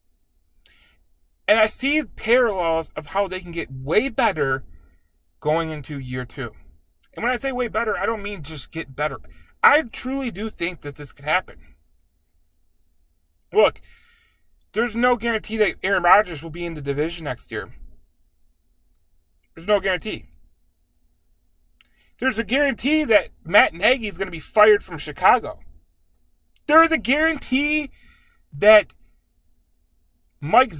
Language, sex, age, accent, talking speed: English, male, 30-49, American, 140 wpm